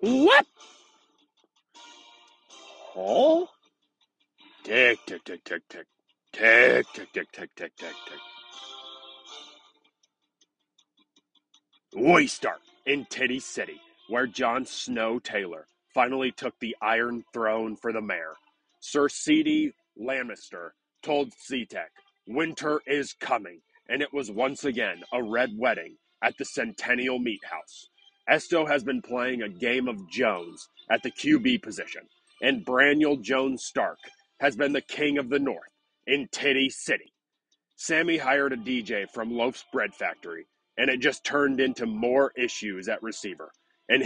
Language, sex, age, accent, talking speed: English, male, 40-59, American, 130 wpm